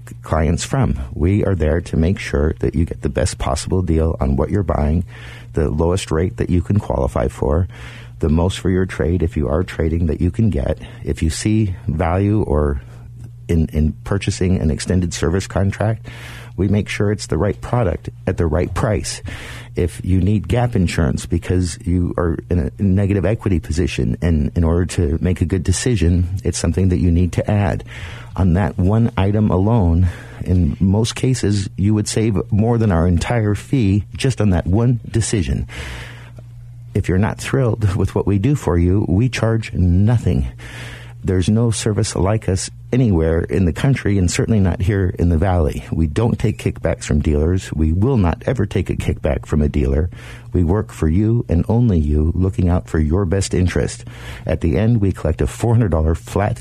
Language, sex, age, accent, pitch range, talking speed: English, male, 50-69, American, 85-115 Hz, 190 wpm